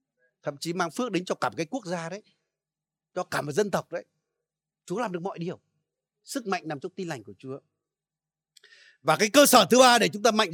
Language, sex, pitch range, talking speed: Vietnamese, male, 145-195 Hz, 235 wpm